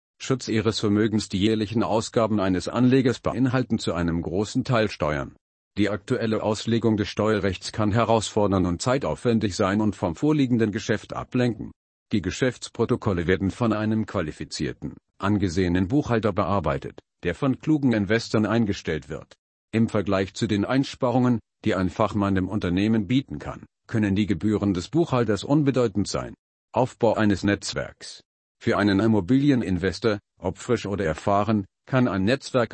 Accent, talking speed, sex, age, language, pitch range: German, 140 wpm, male, 50-69, German, 100-120 Hz